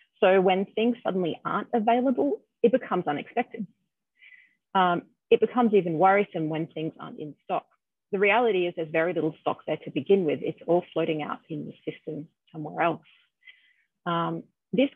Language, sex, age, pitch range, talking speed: English, female, 30-49, 160-205 Hz, 165 wpm